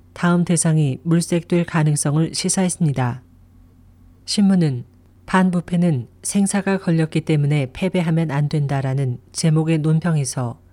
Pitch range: 130-180 Hz